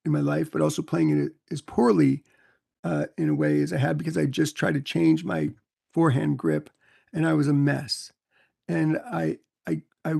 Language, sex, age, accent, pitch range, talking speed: English, male, 40-59, American, 140-165 Hz, 200 wpm